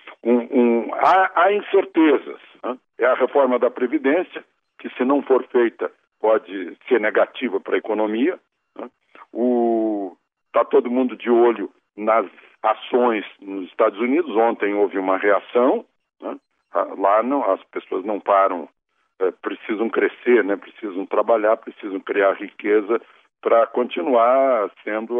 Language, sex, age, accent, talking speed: Portuguese, male, 60-79, Brazilian, 135 wpm